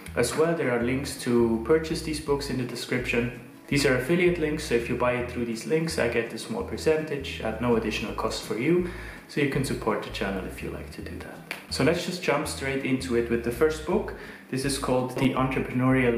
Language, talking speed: English, 235 wpm